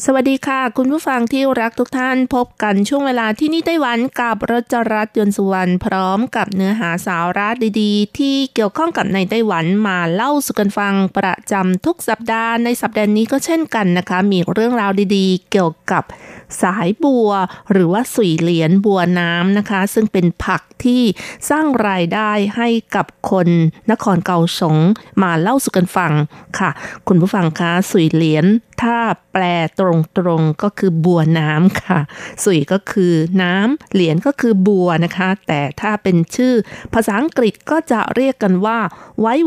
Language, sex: Thai, female